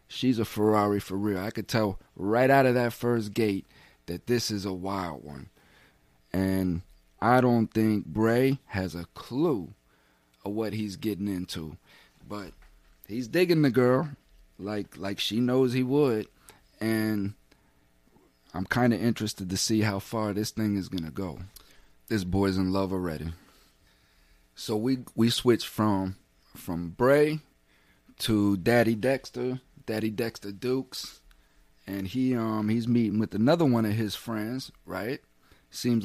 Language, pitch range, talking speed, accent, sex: English, 95-115 Hz, 150 wpm, American, male